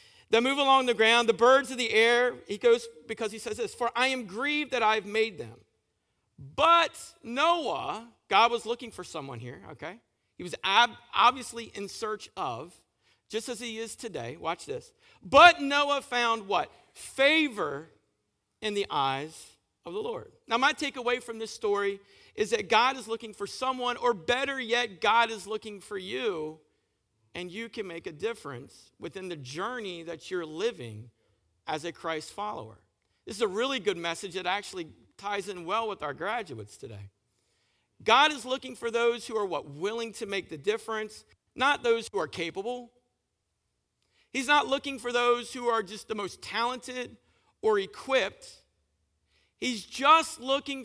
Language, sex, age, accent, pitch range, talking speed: English, male, 50-69, American, 170-255 Hz, 170 wpm